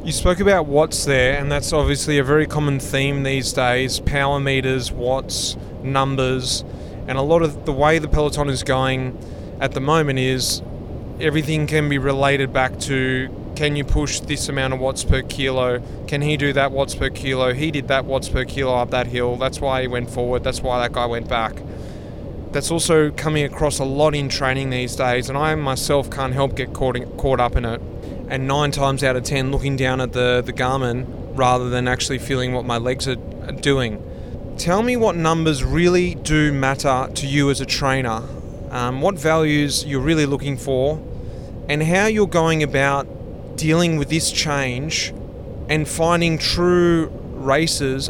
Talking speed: 185 wpm